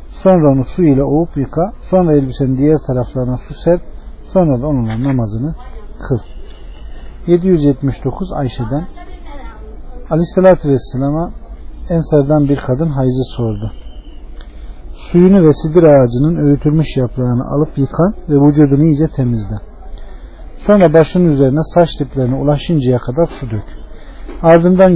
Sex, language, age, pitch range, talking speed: male, Turkish, 50-69, 125-160 Hz, 115 wpm